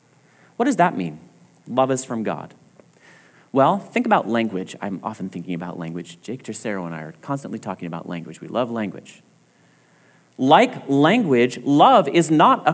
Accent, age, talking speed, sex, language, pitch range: American, 30-49, 165 wpm, male, English, 140-205 Hz